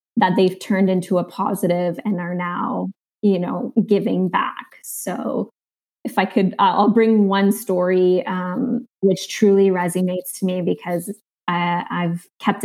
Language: English